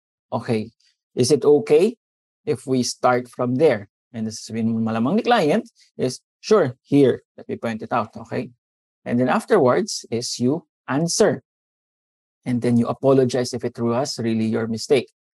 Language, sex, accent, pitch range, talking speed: English, male, Filipino, 120-165 Hz, 150 wpm